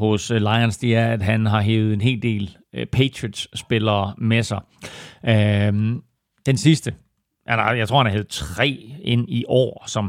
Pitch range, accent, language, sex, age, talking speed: 110-135 Hz, native, Danish, male, 40-59, 165 wpm